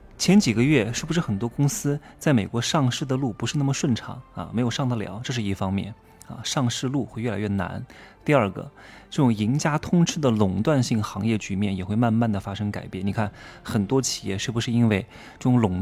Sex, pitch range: male, 105-145 Hz